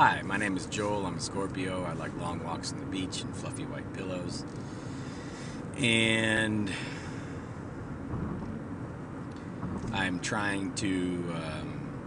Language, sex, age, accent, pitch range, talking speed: English, male, 30-49, American, 90-125 Hz, 120 wpm